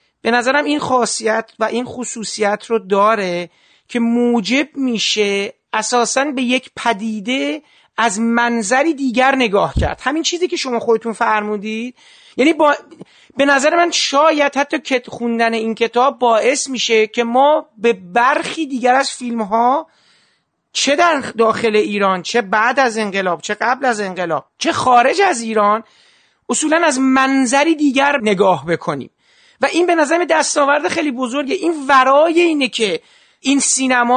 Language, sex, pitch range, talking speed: Persian, male, 210-275 Hz, 145 wpm